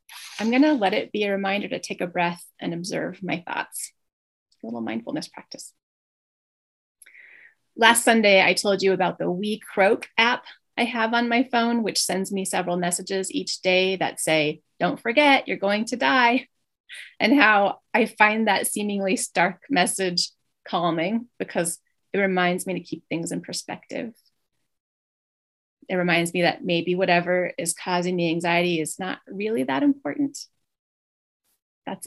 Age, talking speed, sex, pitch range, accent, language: 30-49, 155 wpm, female, 175-250 Hz, American, English